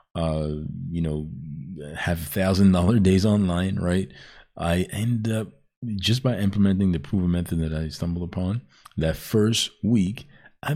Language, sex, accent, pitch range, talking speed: English, male, American, 80-95 Hz, 150 wpm